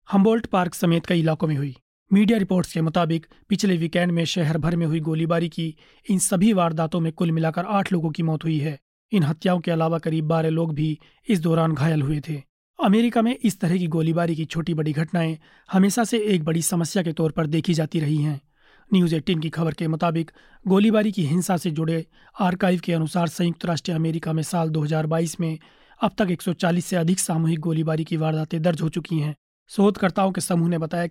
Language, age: Hindi, 30-49